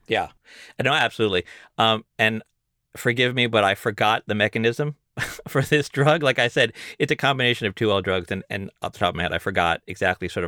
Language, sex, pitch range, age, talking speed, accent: English, male, 105-140 Hz, 30-49, 205 wpm, American